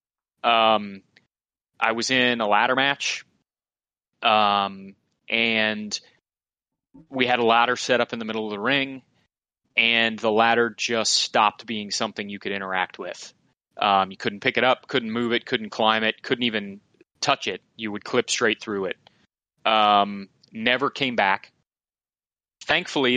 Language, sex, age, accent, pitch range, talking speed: English, male, 30-49, American, 105-120 Hz, 155 wpm